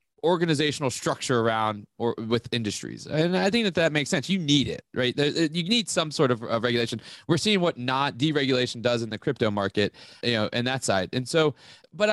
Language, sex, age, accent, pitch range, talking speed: English, male, 20-39, American, 120-160 Hz, 210 wpm